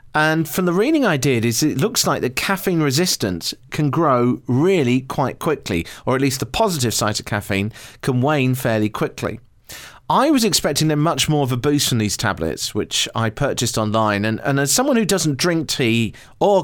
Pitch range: 115-155 Hz